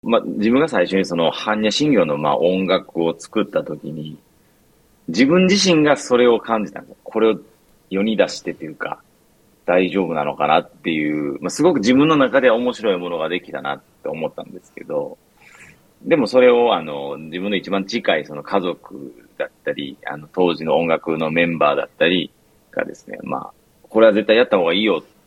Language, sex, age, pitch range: Japanese, male, 40-59, 85-115 Hz